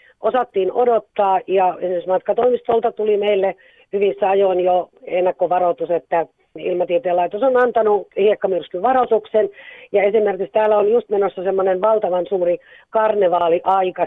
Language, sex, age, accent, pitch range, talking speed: Finnish, female, 40-59, native, 175-220 Hz, 120 wpm